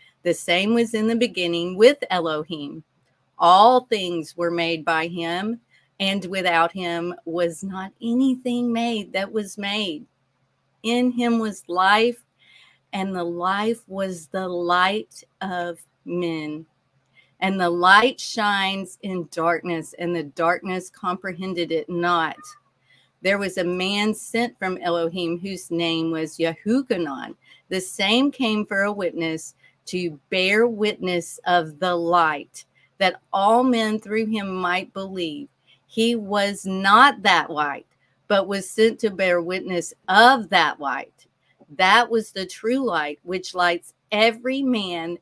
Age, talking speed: 40-59, 135 wpm